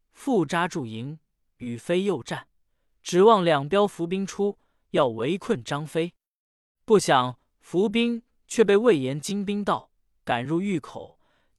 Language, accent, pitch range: Chinese, native, 140-205 Hz